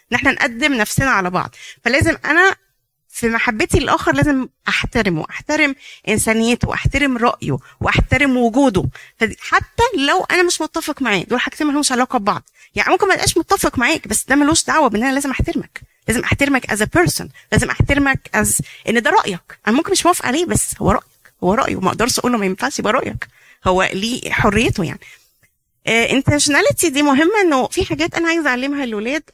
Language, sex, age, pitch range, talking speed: Arabic, female, 30-49, 235-310 Hz, 180 wpm